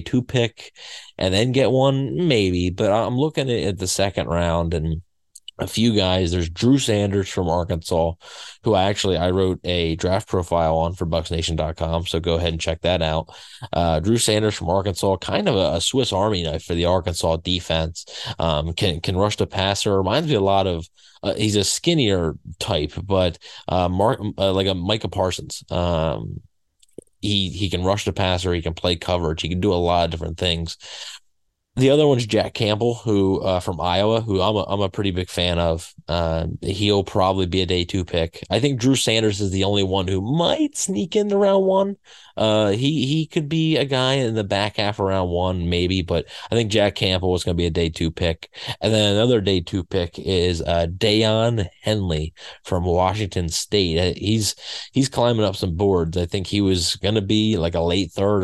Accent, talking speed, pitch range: American, 200 wpm, 85-105 Hz